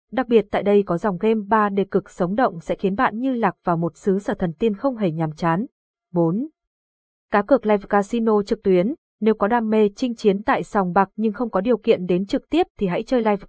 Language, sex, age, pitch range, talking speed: Vietnamese, female, 20-39, 190-245 Hz, 245 wpm